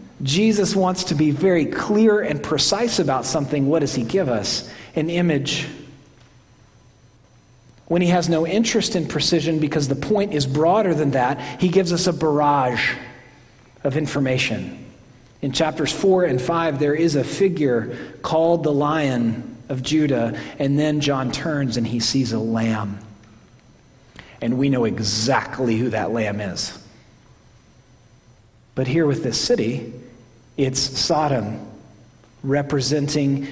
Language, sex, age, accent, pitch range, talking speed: English, male, 40-59, American, 120-155 Hz, 140 wpm